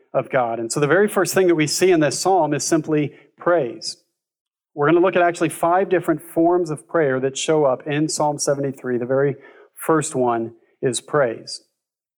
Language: English